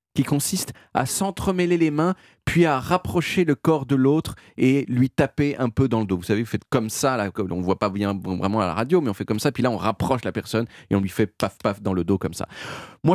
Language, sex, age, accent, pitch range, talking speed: French, male, 30-49, French, 105-155 Hz, 275 wpm